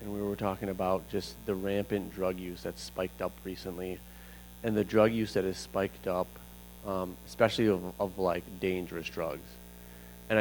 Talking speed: 175 wpm